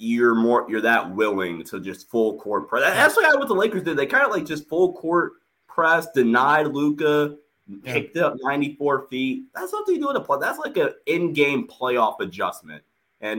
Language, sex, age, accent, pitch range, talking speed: English, male, 20-39, American, 100-145 Hz, 195 wpm